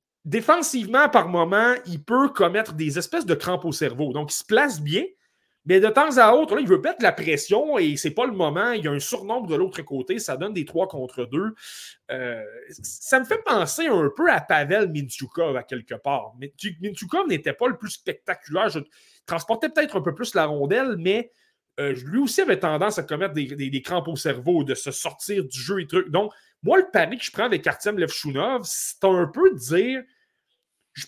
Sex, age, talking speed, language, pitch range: male, 30-49, 215 wpm, French, 150-245 Hz